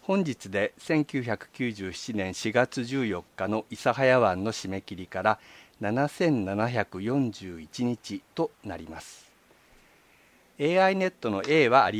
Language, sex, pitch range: Japanese, male, 105-145 Hz